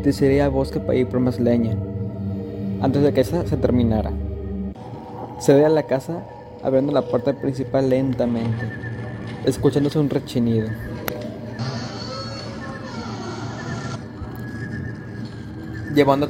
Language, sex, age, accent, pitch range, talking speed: Spanish, male, 20-39, Mexican, 115-140 Hz, 100 wpm